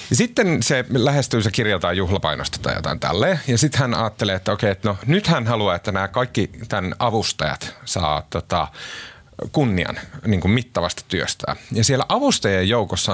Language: Finnish